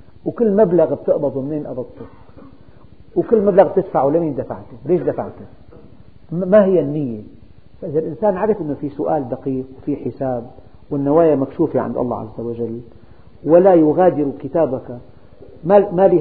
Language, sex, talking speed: Arabic, male, 130 wpm